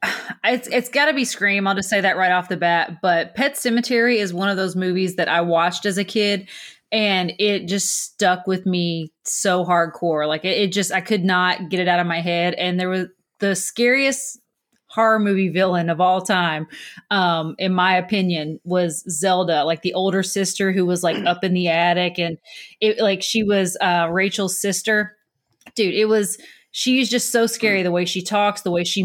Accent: American